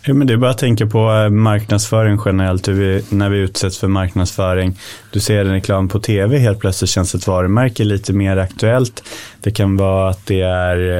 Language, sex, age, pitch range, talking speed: Swedish, male, 20-39, 90-110 Hz, 200 wpm